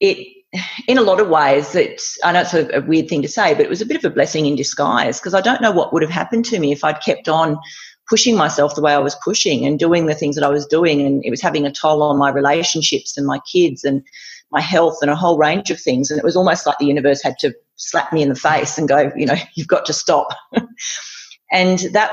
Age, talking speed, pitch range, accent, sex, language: 40-59, 270 wpm, 145-185 Hz, Australian, female, English